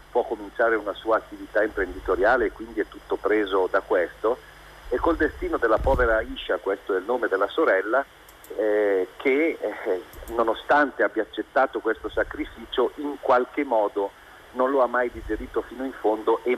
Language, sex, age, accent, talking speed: Italian, male, 50-69, native, 165 wpm